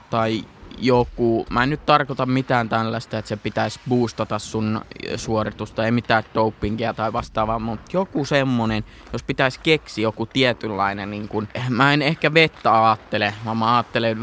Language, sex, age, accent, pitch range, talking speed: Finnish, male, 20-39, native, 110-130 Hz, 155 wpm